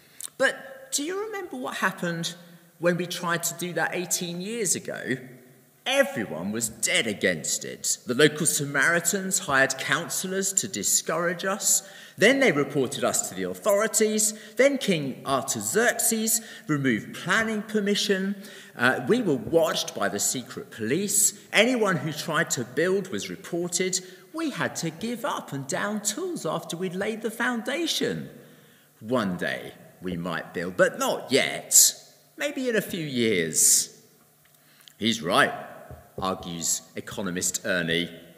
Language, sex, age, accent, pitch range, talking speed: English, male, 40-59, British, 170-225 Hz, 135 wpm